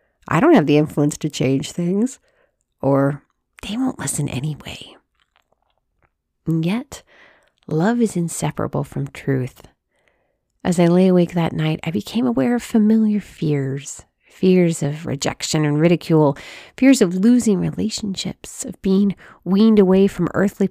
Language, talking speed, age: English, 135 wpm, 40-59